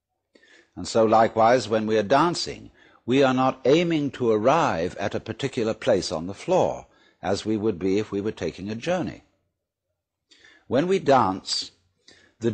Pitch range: 105-140 Hz